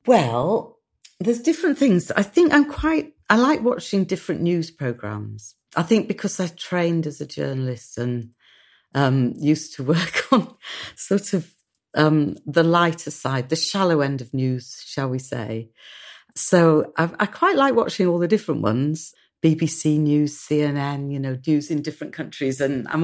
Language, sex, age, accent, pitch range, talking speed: English, female, 40-59, British, 135-175 Hz, 165 wpm